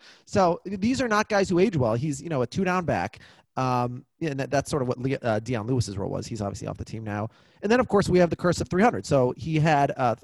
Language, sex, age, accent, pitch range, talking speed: English, male, 30-49, American, 115-155 Hz, 280 wpm